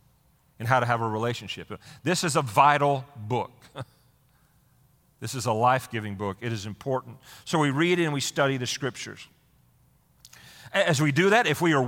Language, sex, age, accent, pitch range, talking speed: English, male, 40-59, American, 115-150 Hz, 170 wpm